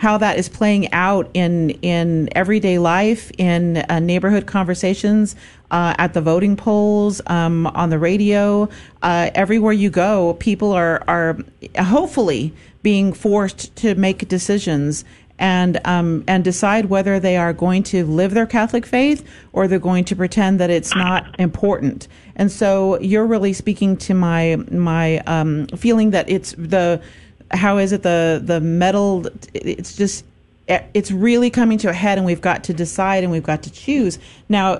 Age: 40-59